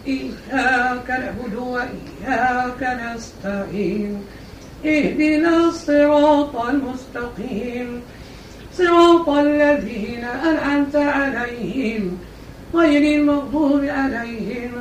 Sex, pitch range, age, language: female, 240-295 Hz, 50-69, Arabic